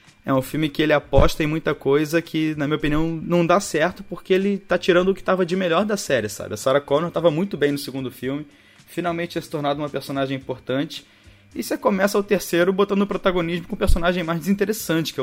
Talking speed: 230 wpm